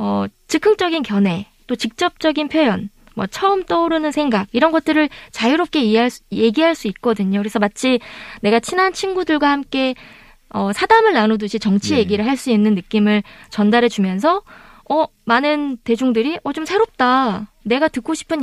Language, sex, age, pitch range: Korean, female, 20-39, 210-300 Hz